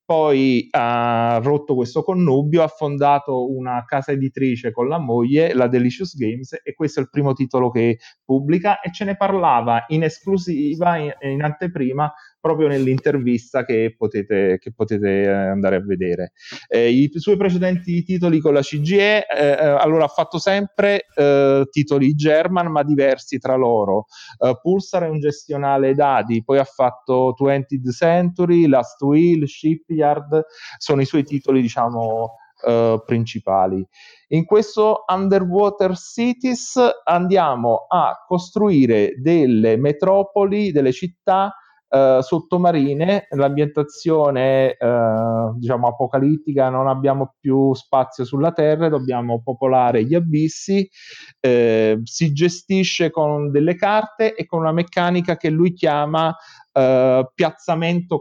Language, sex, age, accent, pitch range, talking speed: Italian, male, 30-49, native, 130-170 Hz, 125 wpm